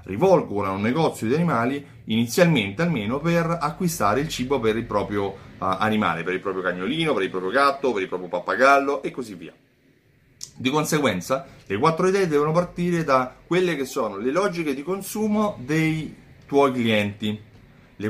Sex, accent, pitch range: male, native, 110-165 Hz